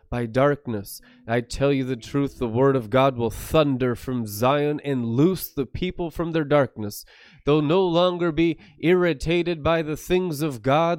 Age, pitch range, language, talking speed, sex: 20-39, 130-170 Hz, English, 175 wpm, male